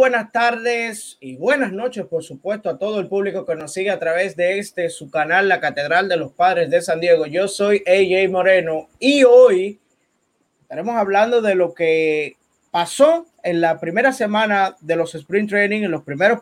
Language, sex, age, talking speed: Spanish, male, 20-39, 185 wpm